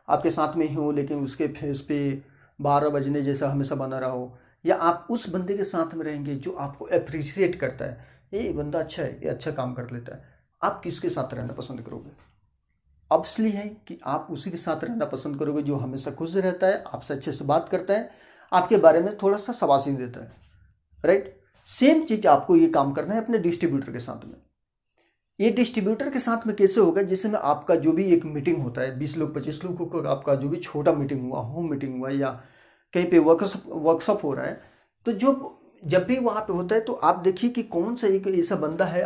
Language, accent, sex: Hindi, native, male